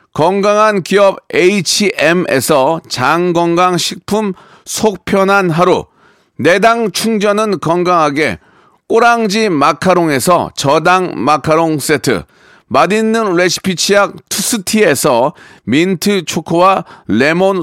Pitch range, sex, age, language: 175-215 Hz, male, 40-59, Korean